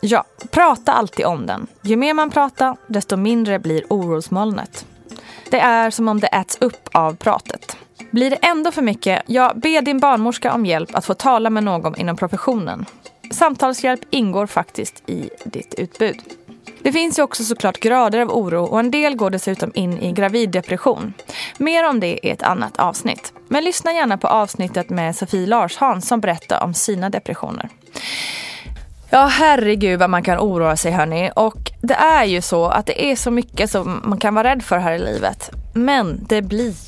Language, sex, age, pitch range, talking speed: Swedish, female, 20-39, 190-255 Hz, 180 wpm